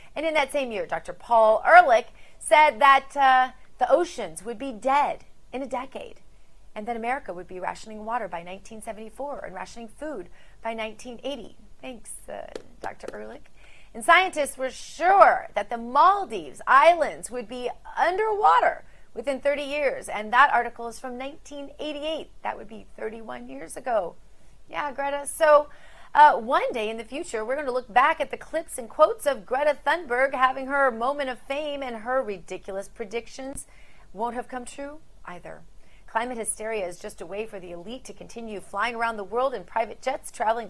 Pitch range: 210-280 Hz